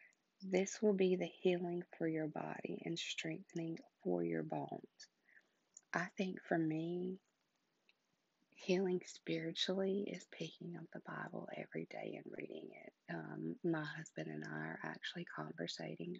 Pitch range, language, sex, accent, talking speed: 150-180 Hz, English, female, American, 135 wpm